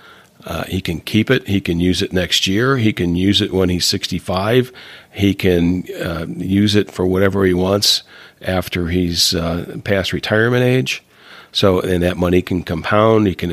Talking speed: 195 wpm